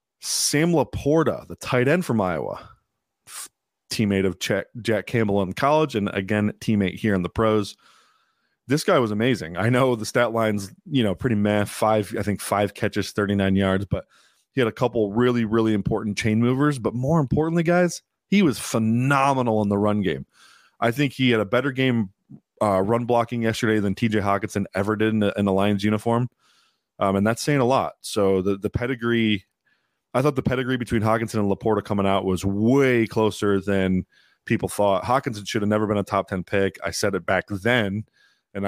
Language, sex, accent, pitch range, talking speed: English, male, American, 100-120 Hz, 195 wpm